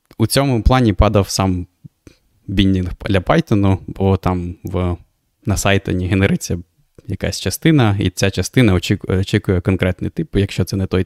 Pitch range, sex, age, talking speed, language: 90-105 Hz, male, 20-39, 140 wpm, Ukrainian